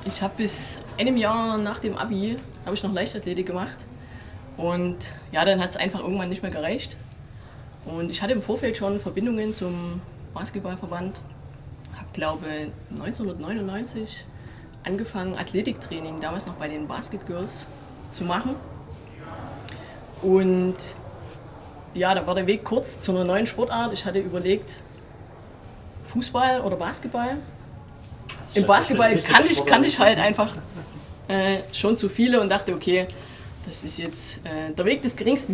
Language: German